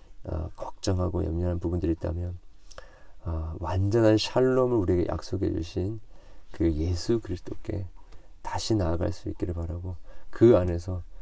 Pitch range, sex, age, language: 85-105 Hz, male, 40-59, Korean